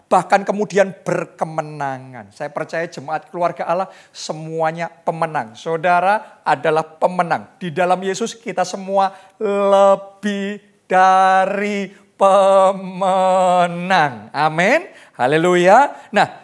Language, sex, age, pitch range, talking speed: Indonesian, male, 40-59, 165-240 Hz, 90 wpm